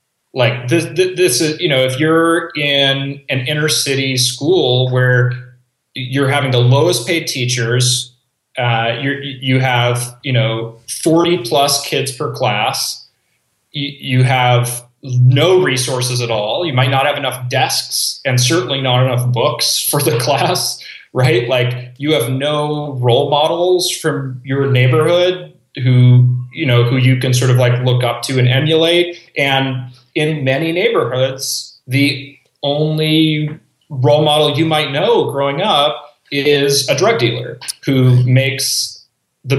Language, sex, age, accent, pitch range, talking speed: English, male, 30-49, American, 125-150 Hz, 145 wpm